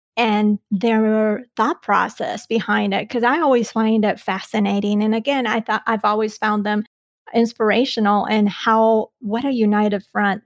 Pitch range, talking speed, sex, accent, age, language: 210-240 Hz, 155 wpm, female, American, 30-49, English